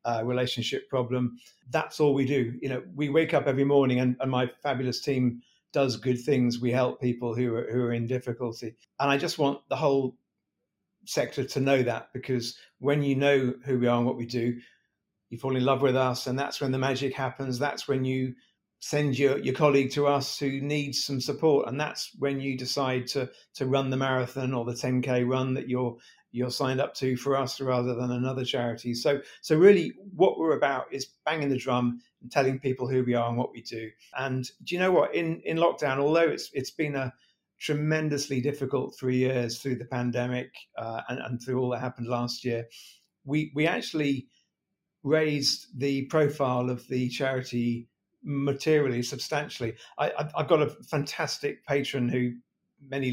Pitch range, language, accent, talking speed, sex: 125-140 Hz, English, British, 195 wpm, male